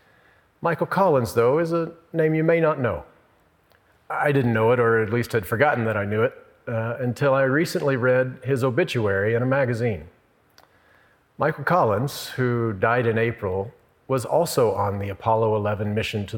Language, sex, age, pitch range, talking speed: English, male, 40-59, 110-135 Hz, 170 wpm